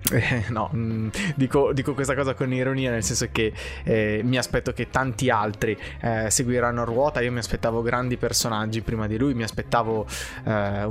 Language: Italian